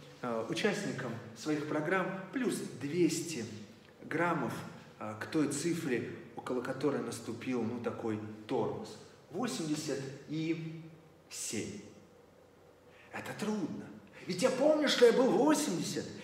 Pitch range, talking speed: 140-220 Hz, 100 wpm